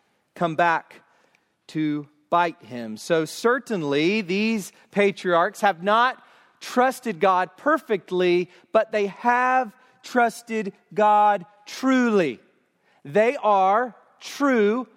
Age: 40-59